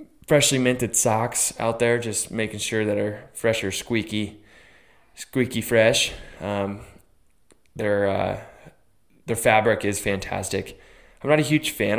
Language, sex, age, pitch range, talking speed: English, male, 20-39, 100-120 Hz, 135 wpm